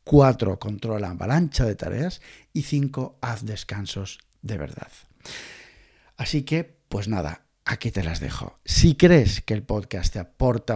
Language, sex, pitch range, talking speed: Spanish, male, 100-130 Hz, 145 wpm